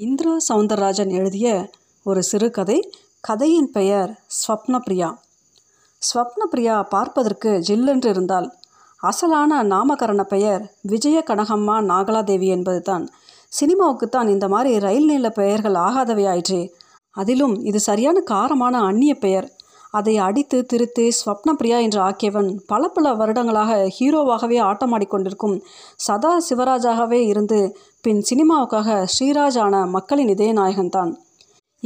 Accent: native